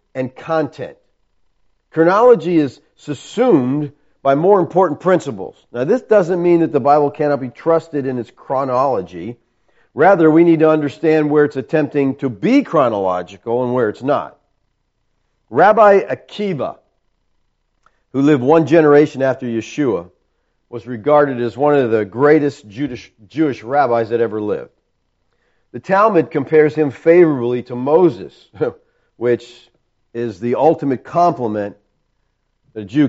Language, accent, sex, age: English, American, male, 50-69